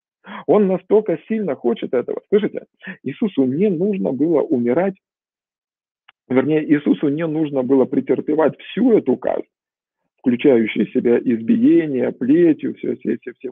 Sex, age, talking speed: male, 40-59, 125 wpm